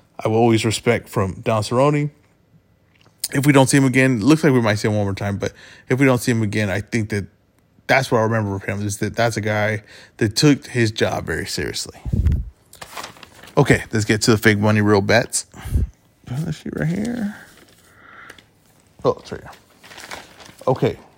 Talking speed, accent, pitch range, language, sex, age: 195 wpm, American, 105-135 Hz, English, male, 20-39